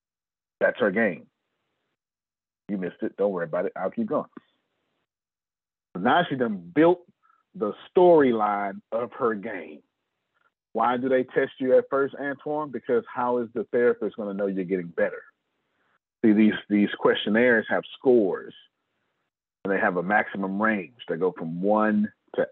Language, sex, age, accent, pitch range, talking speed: English, male, 40-59, American, 95-155 Hz, 155 wpm